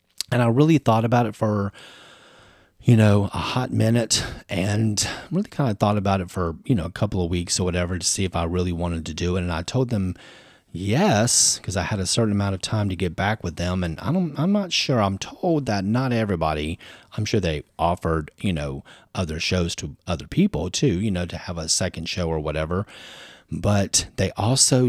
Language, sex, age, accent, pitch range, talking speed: English, male, 30-49, American, 85-110 Hz, 215 wpm